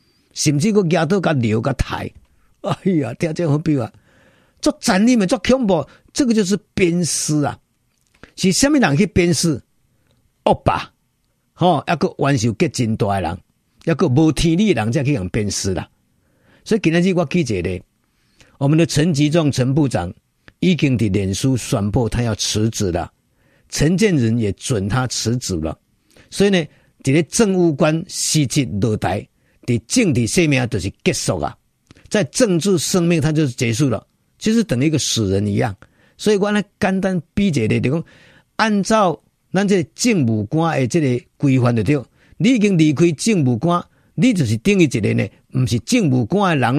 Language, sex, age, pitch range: Chinese, male, 50-69, 115-175 Hz